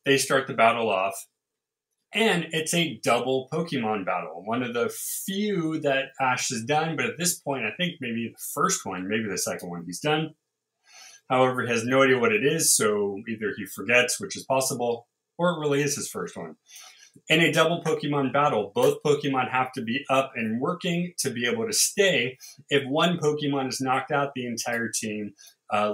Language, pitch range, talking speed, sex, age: English, 130-170 Hz, 195 wpm, male, 30-49